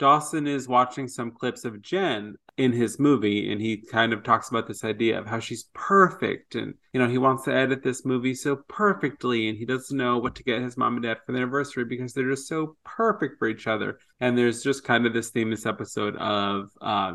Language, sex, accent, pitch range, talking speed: English, male, American, 110-130 Hz, 230 wpm